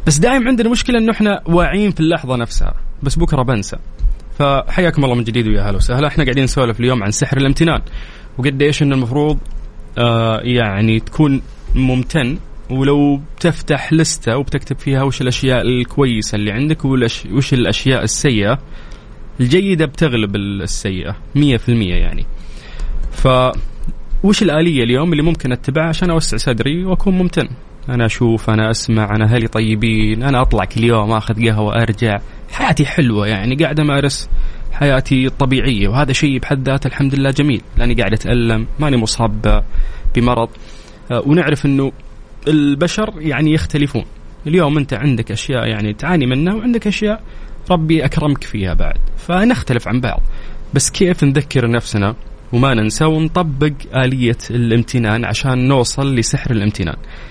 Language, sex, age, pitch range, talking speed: Arabic, male, 20-39, 115-150 Hz, 140 wpm